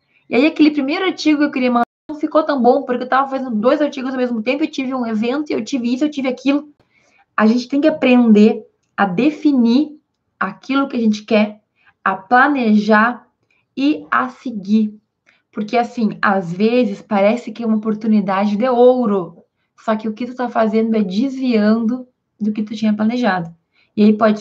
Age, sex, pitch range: 20-39, female, 215-260 Hz